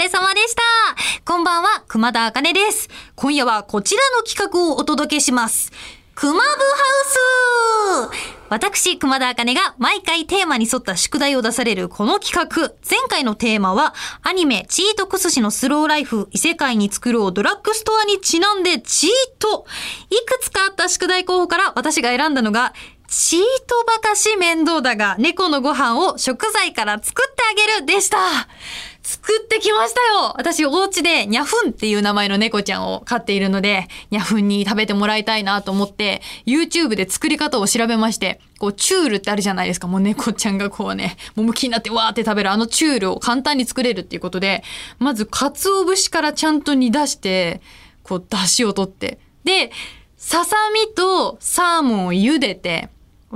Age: 20-39